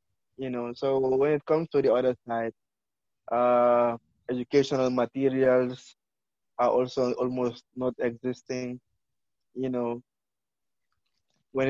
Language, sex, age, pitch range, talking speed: English, male, 20-39, 120-130 Hz, 110 wpm